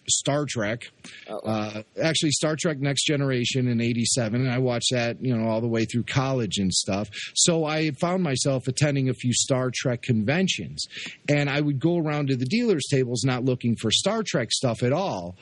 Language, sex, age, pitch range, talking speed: English, male, 40-59, 110-145 Hz, 195 wpm